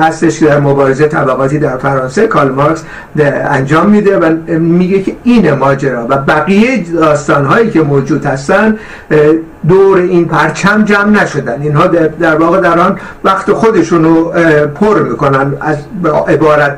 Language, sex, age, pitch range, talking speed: Persian, male, 50-69, 150-195 Hz, 145 wpm